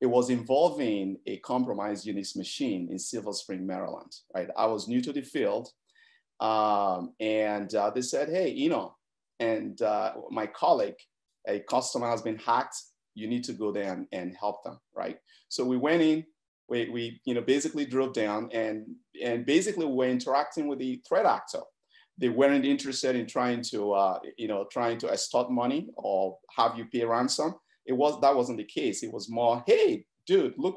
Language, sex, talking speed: English, male, 185 wpm